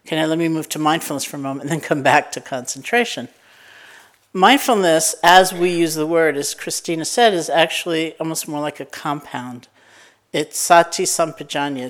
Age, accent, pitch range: 60-79, American, 140-165 Hz